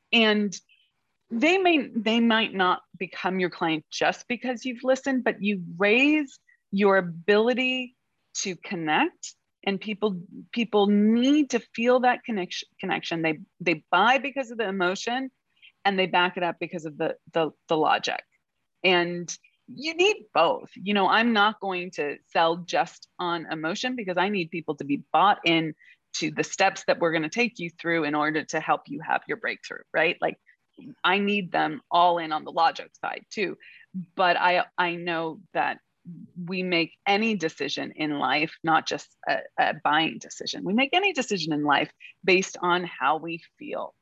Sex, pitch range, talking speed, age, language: female, 175-235 Hz, 175 wpm, 30-49, English